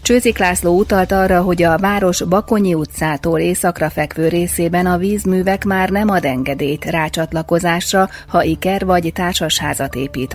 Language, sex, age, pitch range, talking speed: Hungarian, female, 30-49, 155-190 Hz, 140 wpm